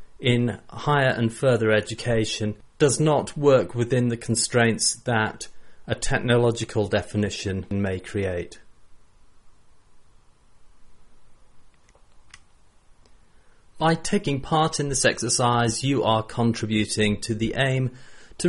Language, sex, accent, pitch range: English, male, British, 105-130 Hz